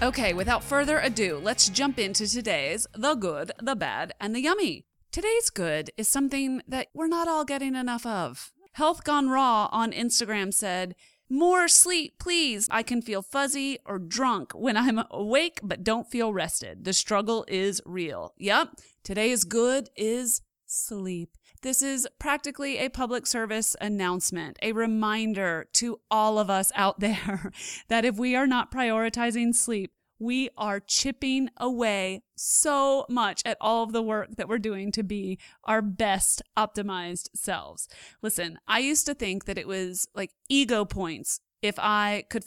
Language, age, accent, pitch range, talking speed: English, 30-49, American, 200-260 Hz, 160 wpm